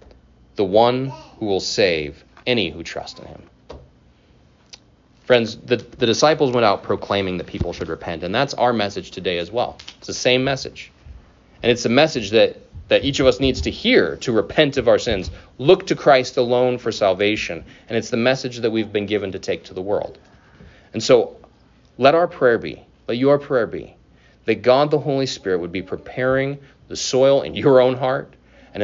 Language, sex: English, male